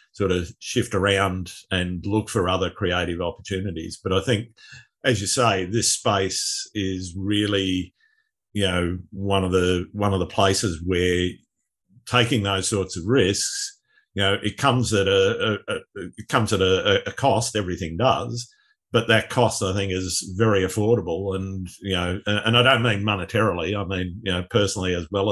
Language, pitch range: English, 95-110 Hz